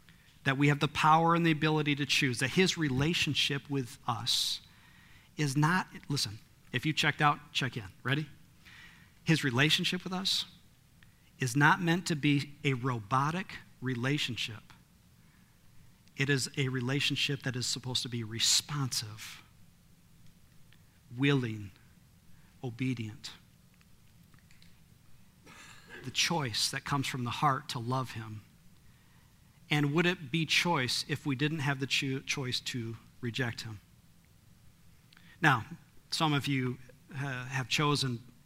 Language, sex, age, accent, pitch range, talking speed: English, male, 40-59, American, 125-155 Hz, 125 wpm